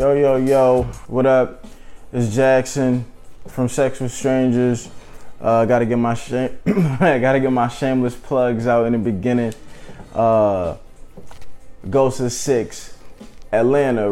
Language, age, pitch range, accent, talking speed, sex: English, 20-39, 115-130 Hz, American, 130 wpm, male